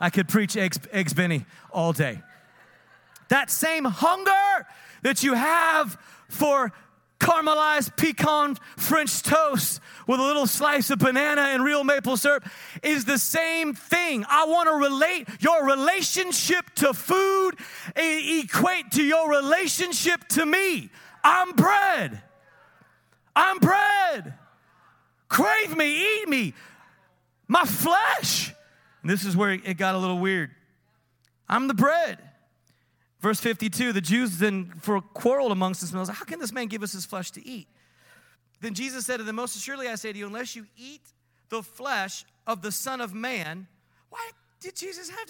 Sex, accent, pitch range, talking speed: male, American, 195-315 Hz, 150 wpm